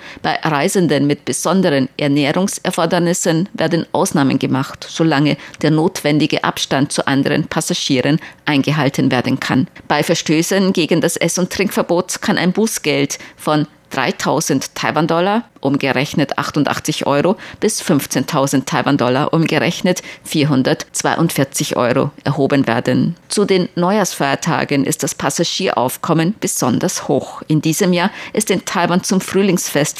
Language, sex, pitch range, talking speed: German, female, 145-180 Hz, 115 wpm